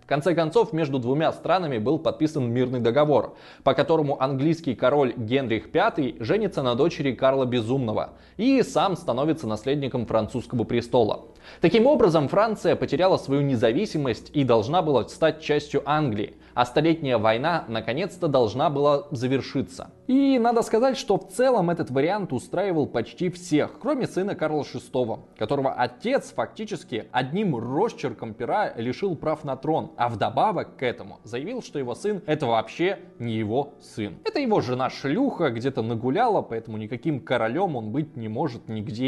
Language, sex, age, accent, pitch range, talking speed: Russian, male, 20-39, native, 120-180 Hz, 150 wpm